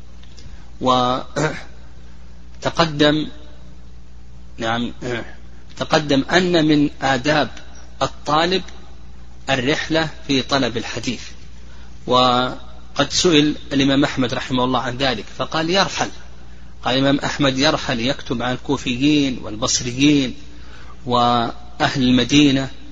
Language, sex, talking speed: Arabic, male, 80 wpm